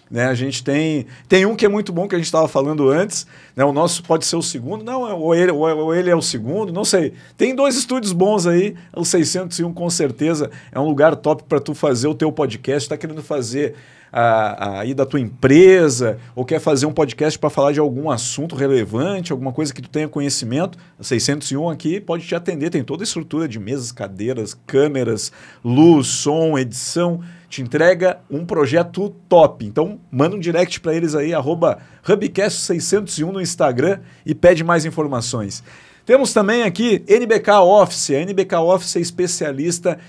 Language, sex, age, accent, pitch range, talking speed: Portuguese, male, 50-69, Brazilian, 140-180 Hz, 185 wpm